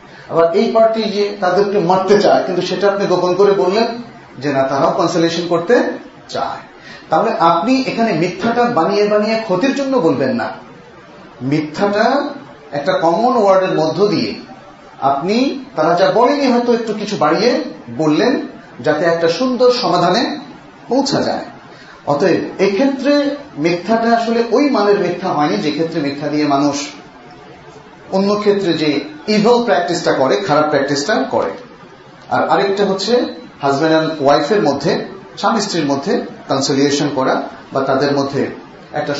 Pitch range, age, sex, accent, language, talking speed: 155-230 Hz, 40-59, male, native, Bengali, 75 wpm